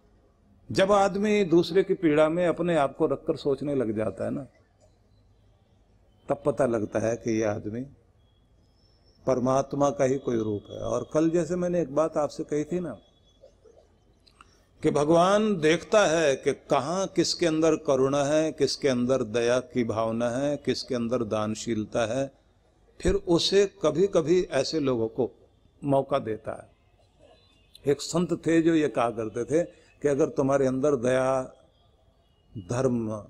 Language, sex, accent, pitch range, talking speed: Hindi, male, native, 110-155 Hz, 150 wpm